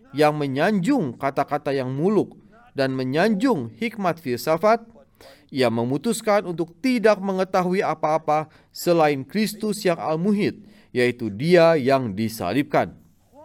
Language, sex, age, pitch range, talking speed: Indonesian, male, 30-49, 135-210 Hz, 105 wpm